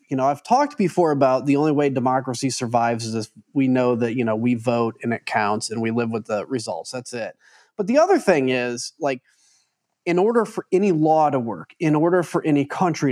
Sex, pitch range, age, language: male, 130-170 Hz, 30-49, English